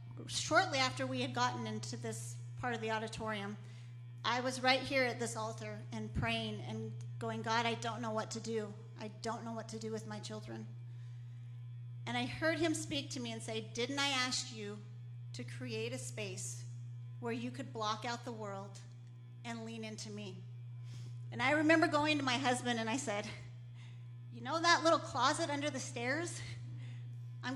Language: English